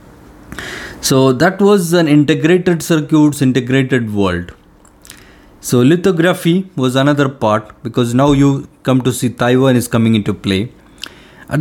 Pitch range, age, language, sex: 125-165 Hz, 20-39, English, male